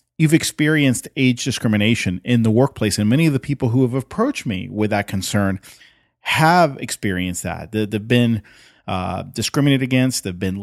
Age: 30-49